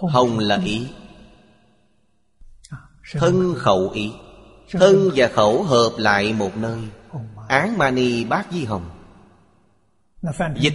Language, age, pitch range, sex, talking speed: Vietnamese, 30-49, 105-150 Hz, male, 105 wpm